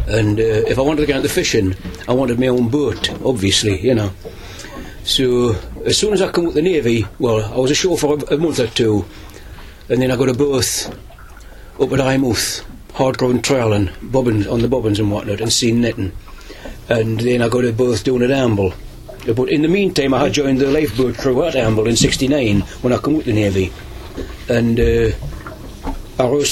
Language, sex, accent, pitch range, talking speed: English, male, British, 110-135 Hz, 210 wpm